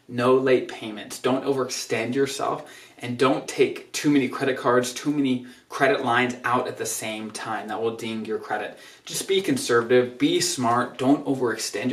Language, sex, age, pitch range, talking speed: English, male, 20-39, 125-160 Hz, 170 wpm